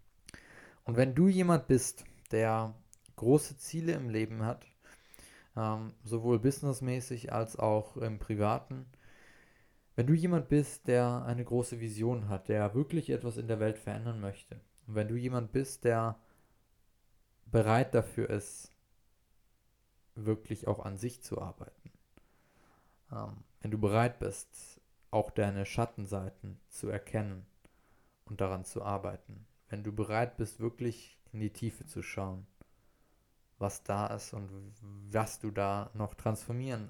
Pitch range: 105-125 Hz